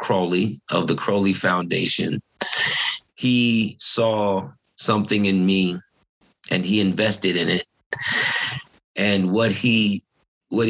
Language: English